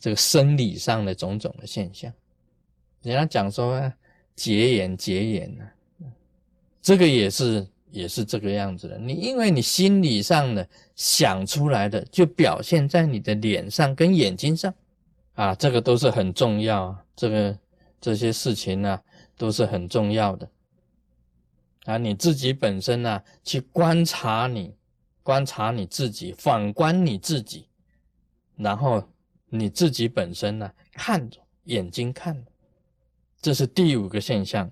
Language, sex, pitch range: Chinese, male, 105-170 Hz